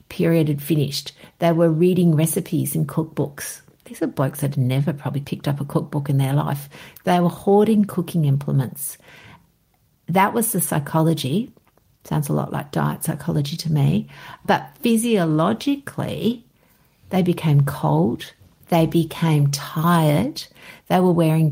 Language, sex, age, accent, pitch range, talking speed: English, female, 60-79, Australian, 145-180 Hz, 140 wpm